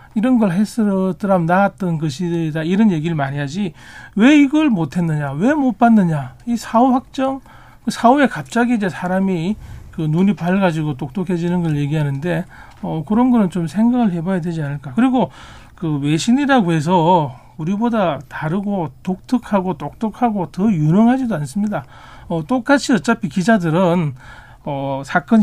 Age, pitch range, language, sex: 40-59, 155-205 Hz, Korean, male